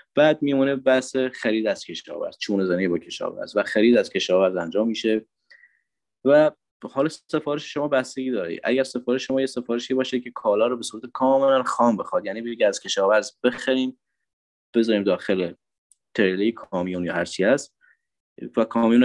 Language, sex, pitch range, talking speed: Persian, male, 105-150 Hz, 160 wpm